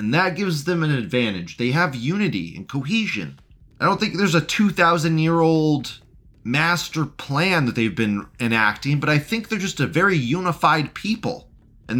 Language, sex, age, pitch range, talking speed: English, male, 30-49, 115-170 Hz, 165 wpm